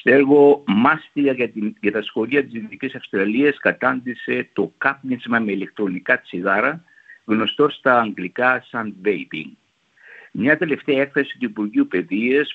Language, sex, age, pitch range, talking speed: Greek, male, 60-79, 110-160 Hz, 130 wpm